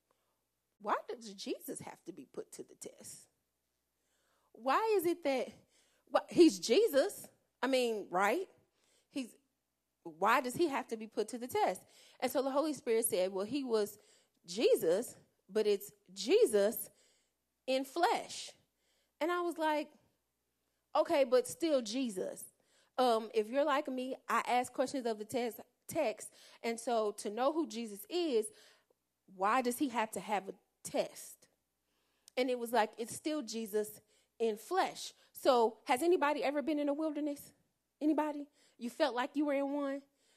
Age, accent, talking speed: 30-49, American, 155 wpm